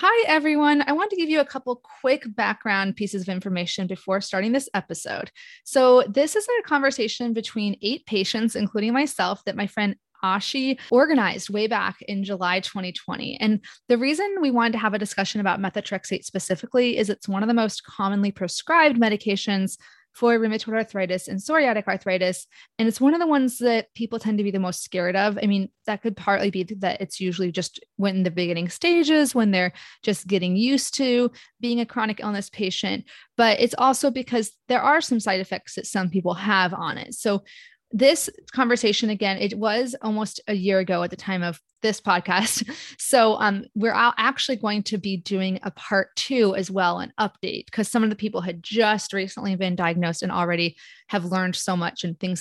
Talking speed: 195 wpm